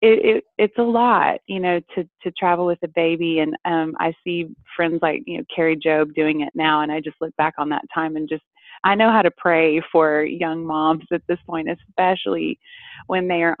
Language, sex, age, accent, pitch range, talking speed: English, female, 30-49, American, 160-190 Hz, 225 wpm